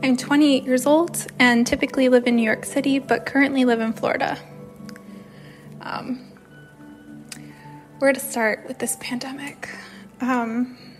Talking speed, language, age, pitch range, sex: 130 wpm, English, 20-39, 230-265 Hz, female